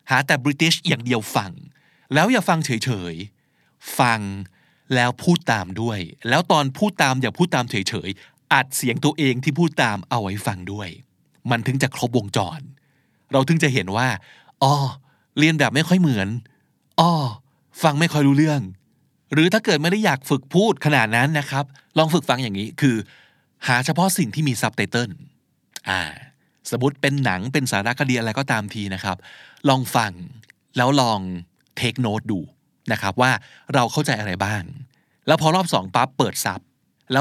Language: Thai